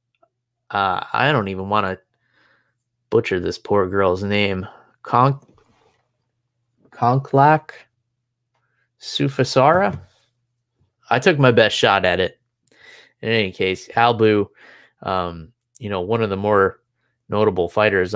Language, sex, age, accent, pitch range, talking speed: English, male, 20-39, American, 105-130 Hz, 110 wpm